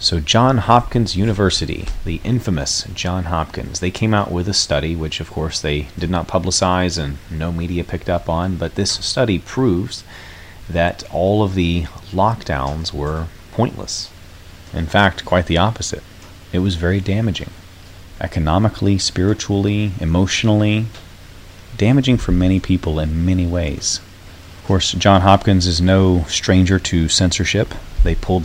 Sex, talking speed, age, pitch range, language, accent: male, 145 wpm, 30-49, 85-100 Hz, English, American